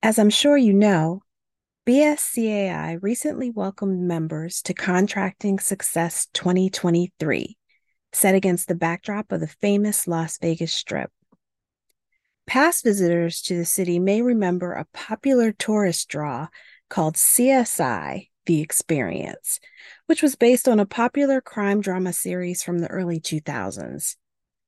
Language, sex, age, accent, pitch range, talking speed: English, female, 40-59, American, 170-220 Hz, 125 wpm